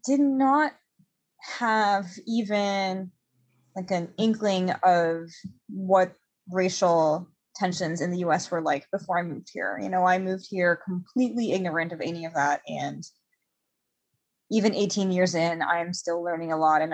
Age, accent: 20-39, American